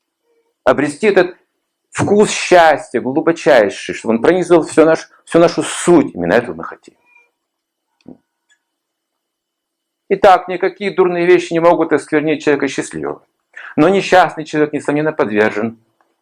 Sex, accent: male, native